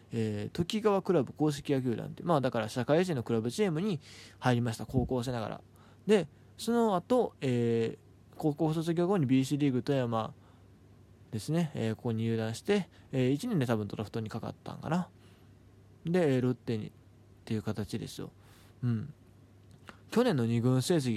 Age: 20-39